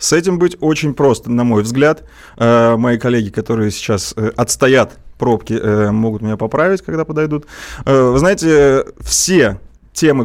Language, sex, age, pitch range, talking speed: Russian, male, 20-39, 110-135 Hz, 135 wpm